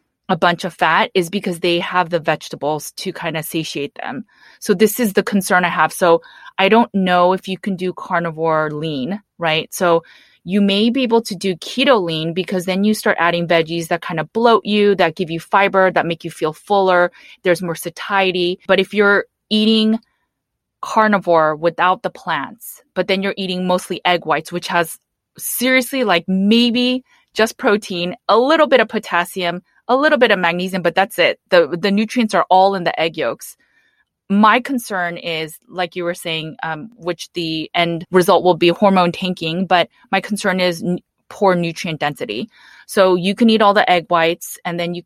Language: English